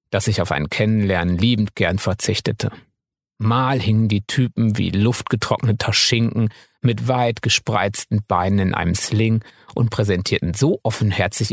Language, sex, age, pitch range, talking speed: German, male, 50-69, 100-130 Hz, 135 wpm